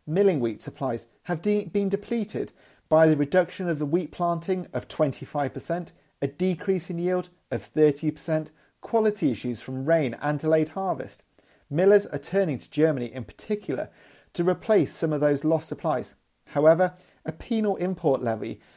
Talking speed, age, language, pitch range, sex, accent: 150 wpm, 40-59, English, 140-185 Hz, male, British